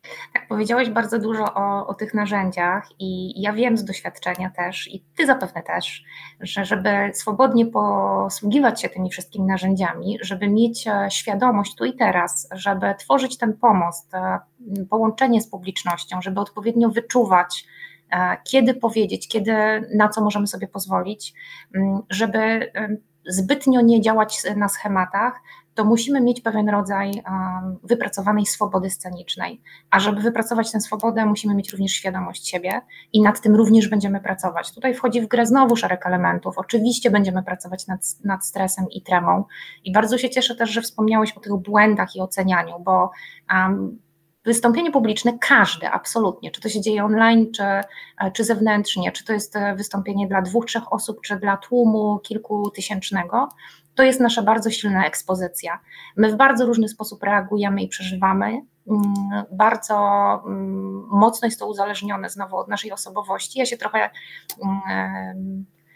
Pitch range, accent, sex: 190-230 Hz, native, female